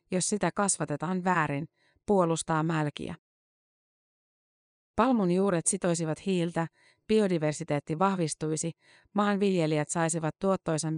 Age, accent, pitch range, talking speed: 30-49, native, 155-185 Hz, 80 wpm